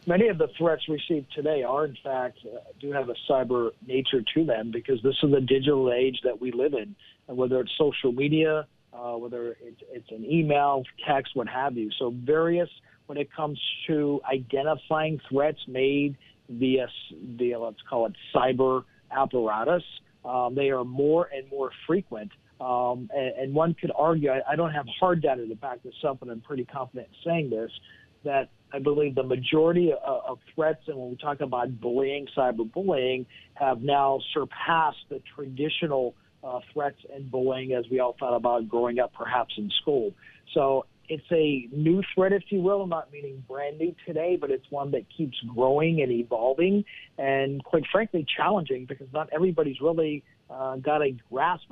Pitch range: 125-155 Hz